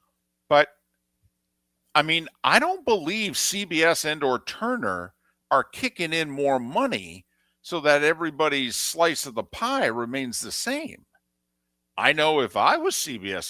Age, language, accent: 50-69, English, American